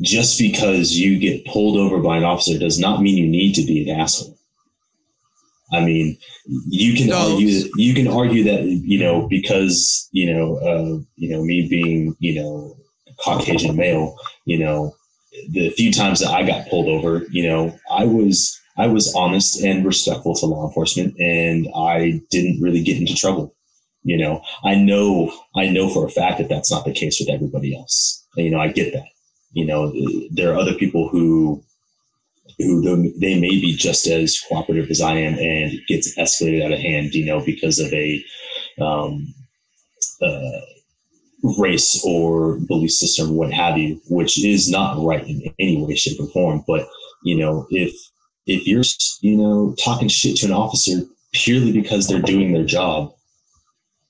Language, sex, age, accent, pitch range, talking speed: English, male, 30-49, American, 80-105 Hz, 175 wpm